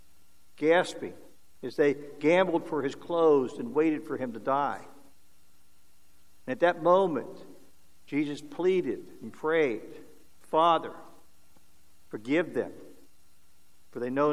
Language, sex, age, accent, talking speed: English, male, 60-79, American, 110 wpm